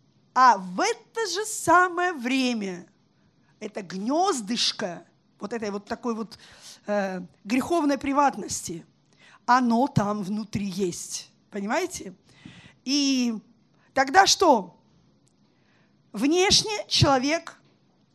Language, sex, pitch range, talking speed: Russian, female, 220-320 Hz, 85 wpm